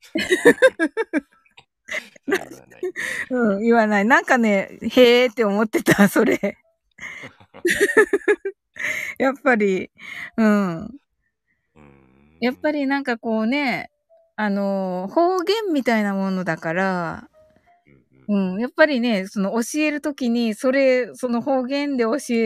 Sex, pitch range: female, 190-275 Hz